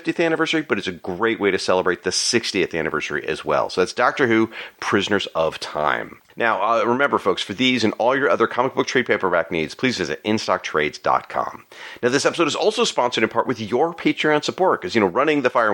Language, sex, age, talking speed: English, male, 40-59, 215 wpm